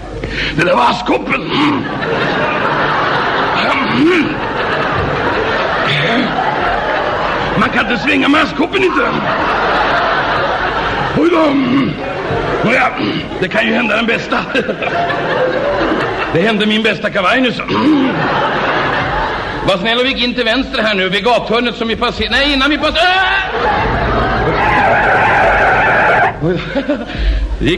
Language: Swedish